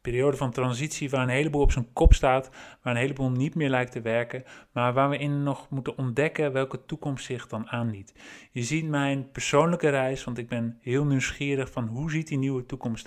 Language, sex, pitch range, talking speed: Dutch, male, 120-140 Hz, 210 wpm